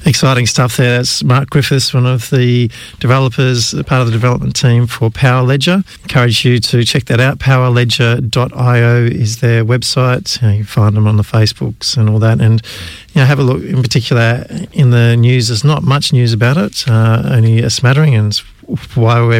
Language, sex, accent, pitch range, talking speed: English, male, Australian, 110-130 Hz, 200 wpm